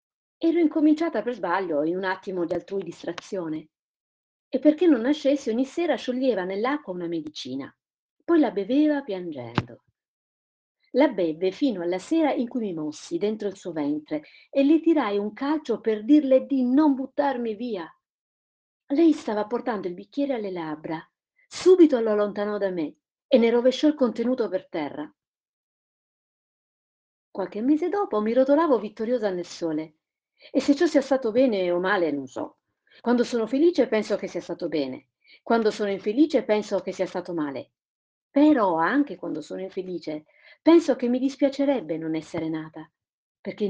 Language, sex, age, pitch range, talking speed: Italian, female, 50-69, 175-275 Hz, 155 wpm